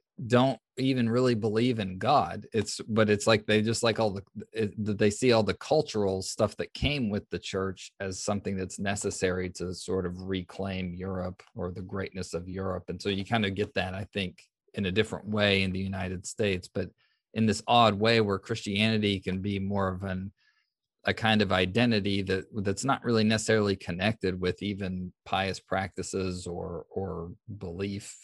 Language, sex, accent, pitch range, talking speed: English, male, American, 95-110 Hz, 185 wpm